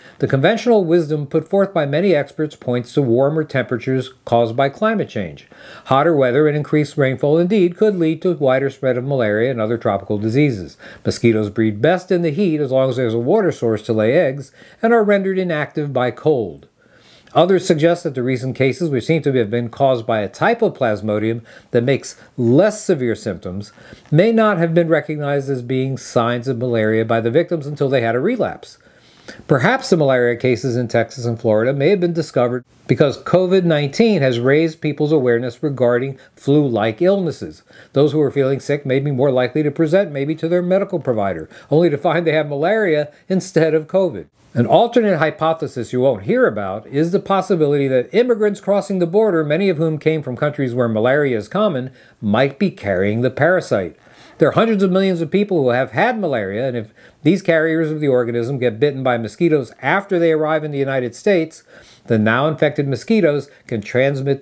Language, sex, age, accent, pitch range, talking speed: English, male, 50-69, American, 125-165 Hz, 190 wpm